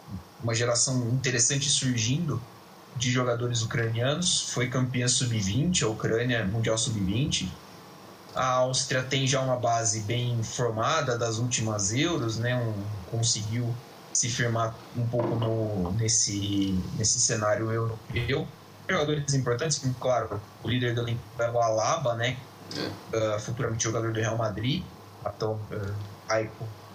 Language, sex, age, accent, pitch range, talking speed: Portuguese, male, 20-39, Brazilian, 110-130 Hz, 125 wpm